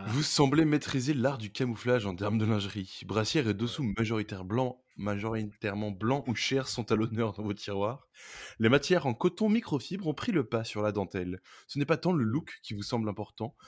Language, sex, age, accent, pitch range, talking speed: French, male, 20-39, French, 105-145 Hz, 205 wpm